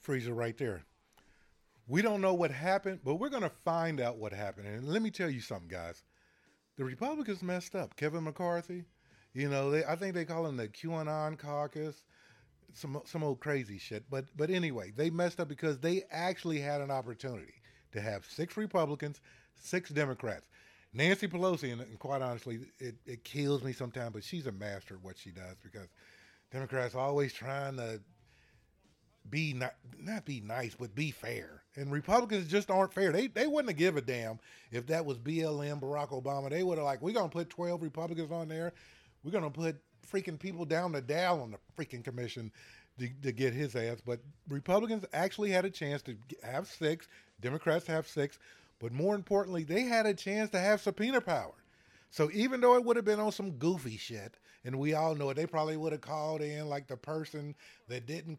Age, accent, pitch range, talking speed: 30-49, American, 125-170 Hz, 195 wpm